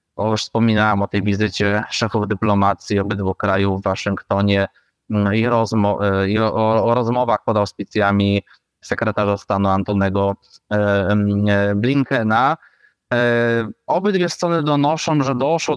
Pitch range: 105-120 Hz